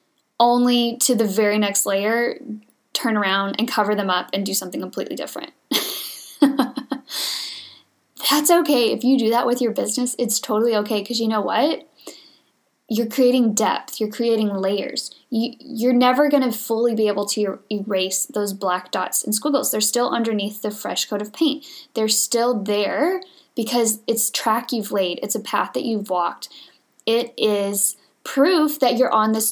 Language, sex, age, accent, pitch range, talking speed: English, female, 10-29, American, 210-250 Hz, 170 wpm